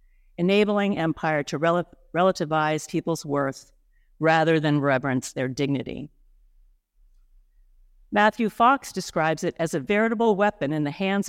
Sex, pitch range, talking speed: female, 150-195 Hz, 115 wpm